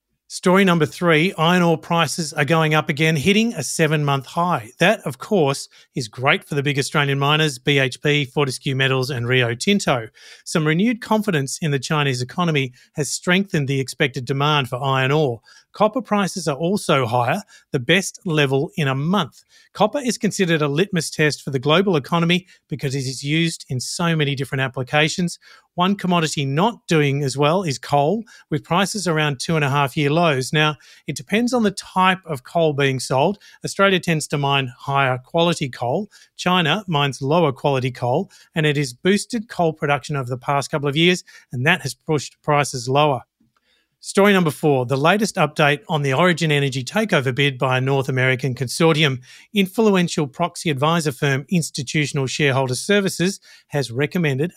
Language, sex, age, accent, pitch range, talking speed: English, male, 40-59, Australian, 140-175 Hz, 175 wpm